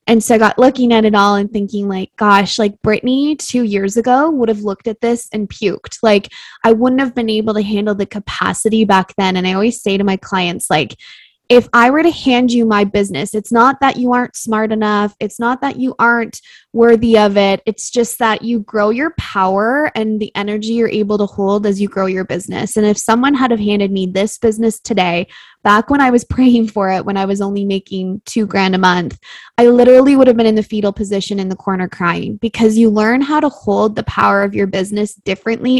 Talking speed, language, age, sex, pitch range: 230 wpm, English, 20-39, female, 200-235 Hz